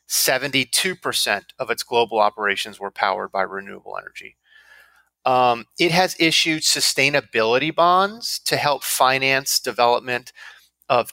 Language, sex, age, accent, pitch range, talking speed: English, male, 30-49, American, 120-145 Hz, 115 wpm